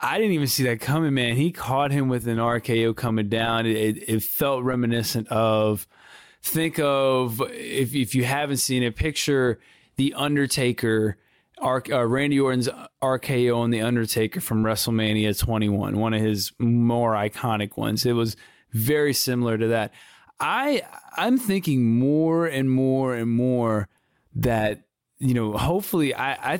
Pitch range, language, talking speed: 110-130 Hz, English, 160 wpm